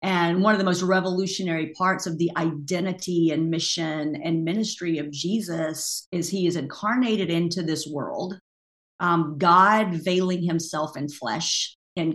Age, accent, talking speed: 50-69, American, 150 wpm